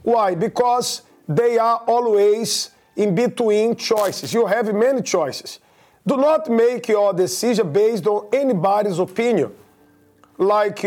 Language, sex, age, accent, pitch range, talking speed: English, male, 50-69, Brazilian, 200-245 Hz, 120 wpm